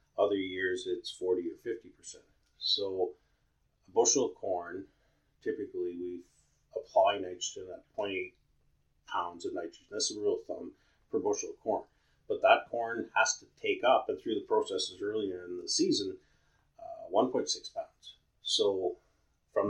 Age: 40-59